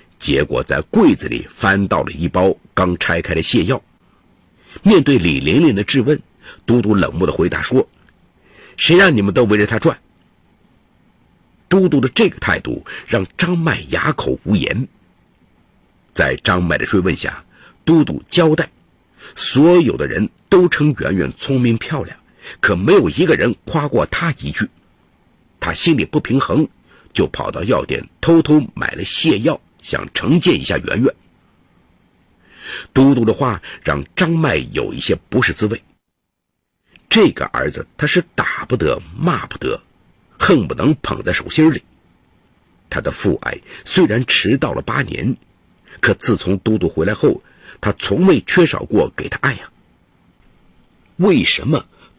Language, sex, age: Chinese, male, 50-69